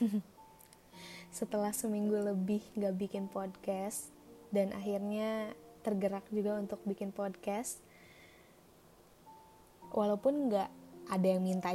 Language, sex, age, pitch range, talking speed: Indonesian, female, 20-39, 195-230 Hz, 90 wpm